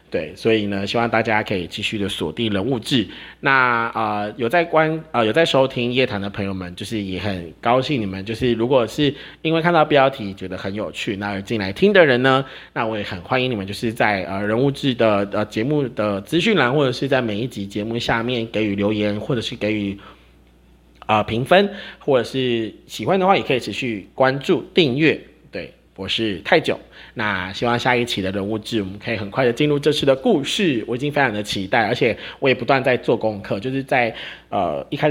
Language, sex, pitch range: Chinese, male, 100-130 Hz